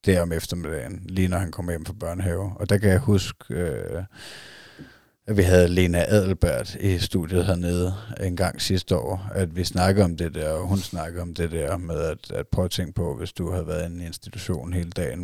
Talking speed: 220 wpm